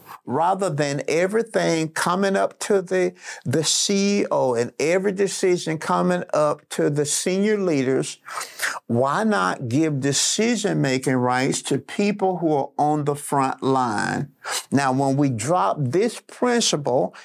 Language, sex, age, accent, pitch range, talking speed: English, male, 50-69, American, 150-215 Hz, 130 wpm